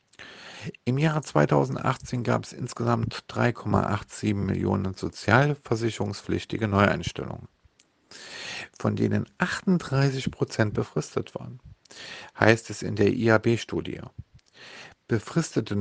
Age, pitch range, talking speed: 50-69, 105-130 Hz, 85 wpm